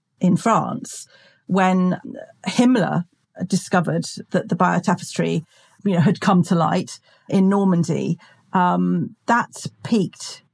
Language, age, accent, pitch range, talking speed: English, 40-59, British, 175-210 Hz, 110 wpm